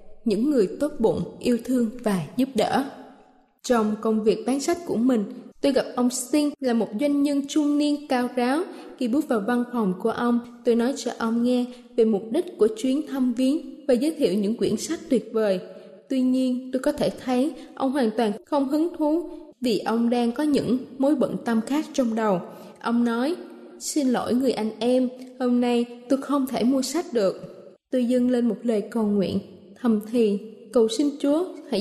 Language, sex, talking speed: Vietnamese, female, 200 wpm